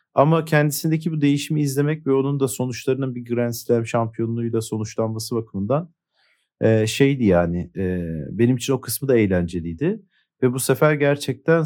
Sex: male